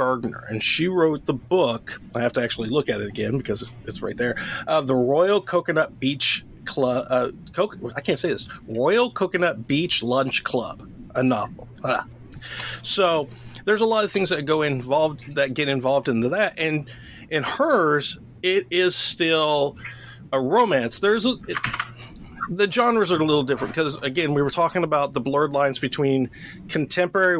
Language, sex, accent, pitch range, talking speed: English, male, American, 130-160 Hz, 165 wpm